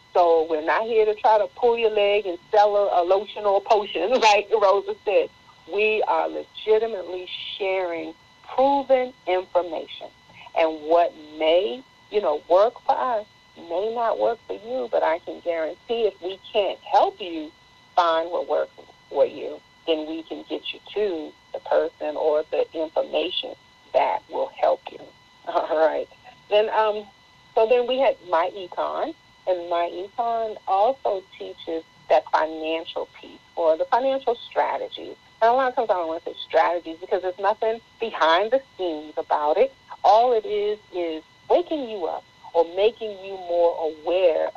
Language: English